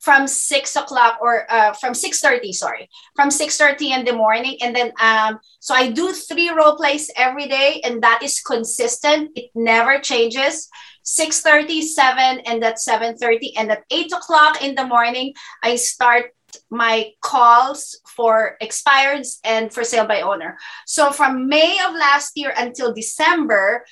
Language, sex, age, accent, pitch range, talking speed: English, female, 20-39, Filipino, 235-295 Hz, 155 wpm